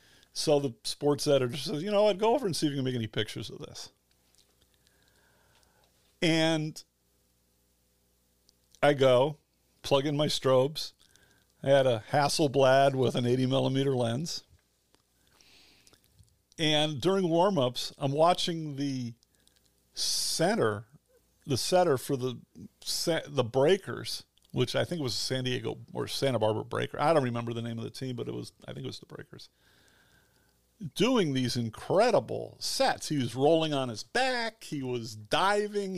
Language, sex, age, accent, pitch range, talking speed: English, male, 50-69, American, 120-165 Hz, 150 wpm